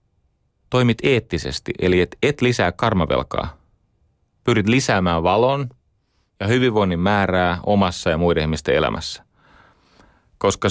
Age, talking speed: 30-49, 105 wpm